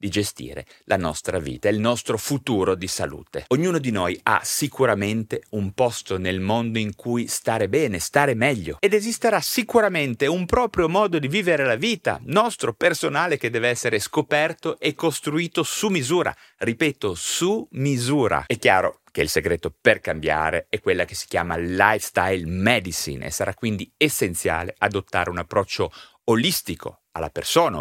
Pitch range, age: 105-175 Hz, 30-49